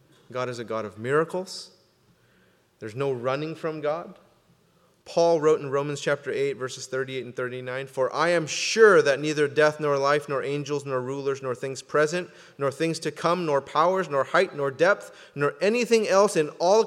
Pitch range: 135-180 Hz